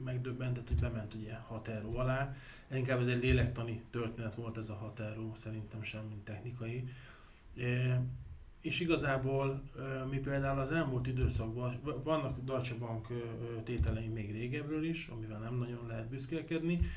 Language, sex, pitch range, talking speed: Hungarian, male, 115-135 Hz, 135 wpm